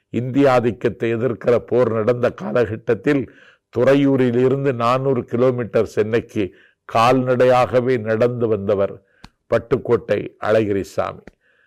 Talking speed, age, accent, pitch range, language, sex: 75 wpm, 50-69, native, 125-160 Hz, Tamil, male